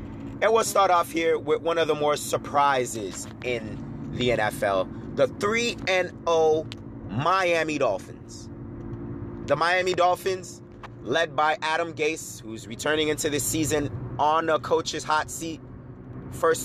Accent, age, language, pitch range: American, 30-49, English, 125-160 Hz